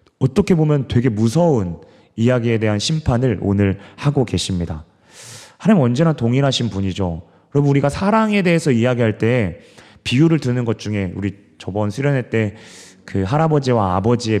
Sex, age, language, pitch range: male, 30-49, Korean, 100-150 Hz